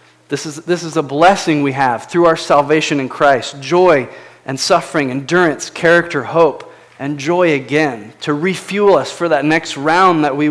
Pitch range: 155-185 Hz